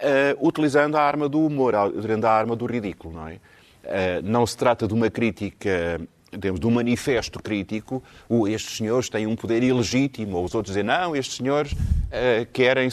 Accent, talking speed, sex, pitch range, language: Portuguese, 160 wpm, male, 100-130 Hz, Portuguese